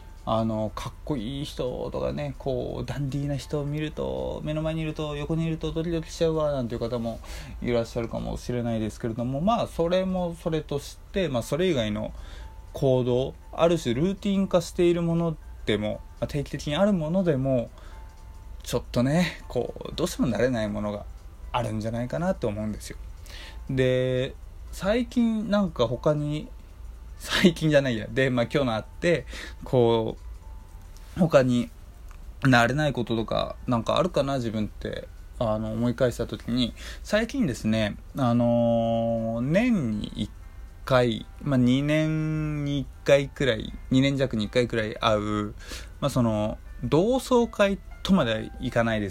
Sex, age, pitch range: male, 20-39, 105-155 Hz